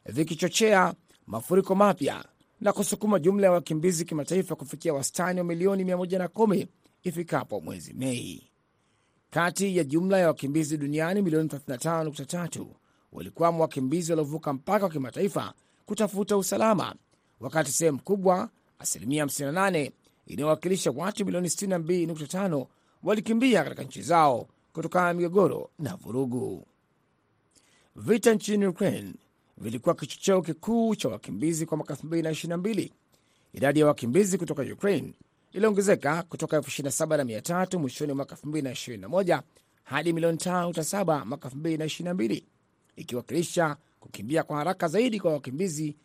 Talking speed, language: 110 wpm, Swahili